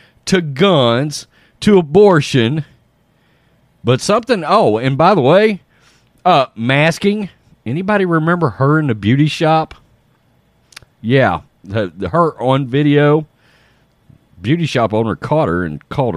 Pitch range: 120-170 Hz